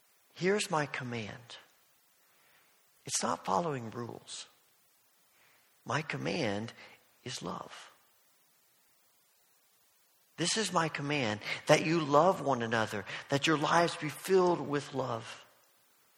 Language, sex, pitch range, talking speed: English, male, 130-170 Hz, 100 wpm